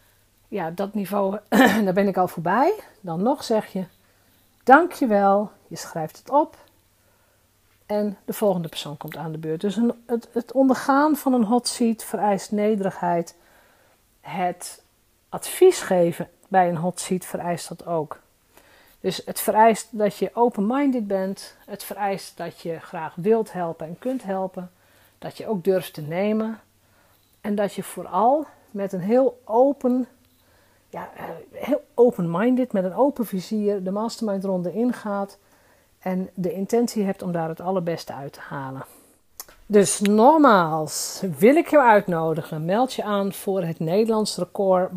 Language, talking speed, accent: Dutch, 150 wpm, Dutch